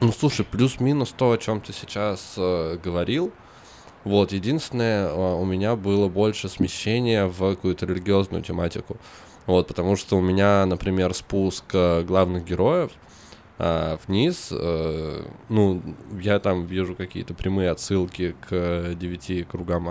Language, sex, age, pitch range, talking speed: Russian, male, 20-39, 85-95 Hz, 135 wpm